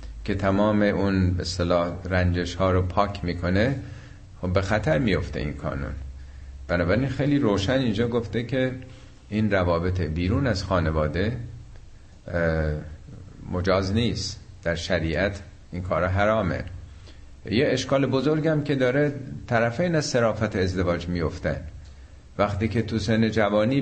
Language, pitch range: Persian, 85-110 Hz